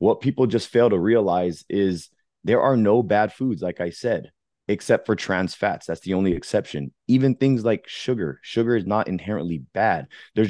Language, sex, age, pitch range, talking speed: English, male, 30-49, 90-120 Hz, 190 wpm